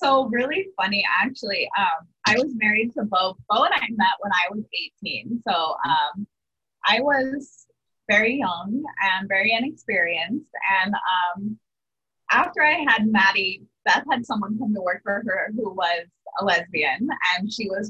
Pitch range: 190-255 Hz